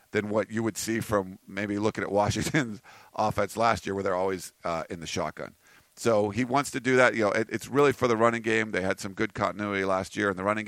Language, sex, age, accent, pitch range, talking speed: English, male, 50-69, American, 95-115 Hz, 255 wpm